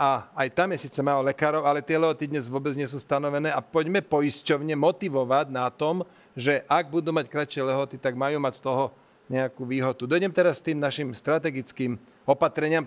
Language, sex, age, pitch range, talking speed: Slovak, male, 40-59, 135-165 Hz, 190 wpm